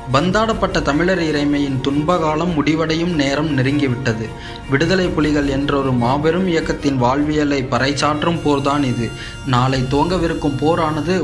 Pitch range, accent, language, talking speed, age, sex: 125-150 Hz, native, Tamil, 100 wpm, 20-39, male